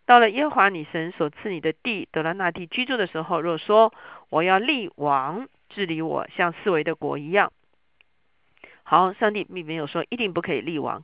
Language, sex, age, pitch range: Chinese, female, 50-69, 155-205 Hz